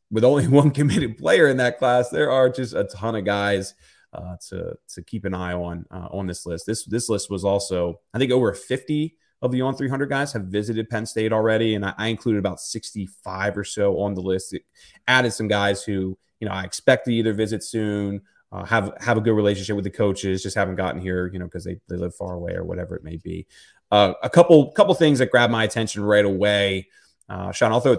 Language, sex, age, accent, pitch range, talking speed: English, male, 30-49, American, 95-120 Hz, 240 wpm